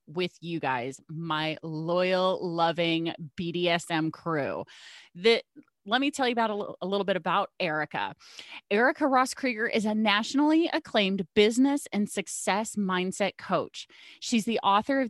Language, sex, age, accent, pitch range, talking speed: English, female, 30-49, American, 170-225 Hz, 145 wpm